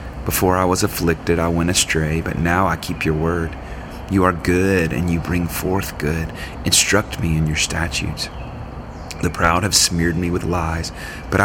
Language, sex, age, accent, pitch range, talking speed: English, male, 30-49, American, 75-90 Hz, 180 wpm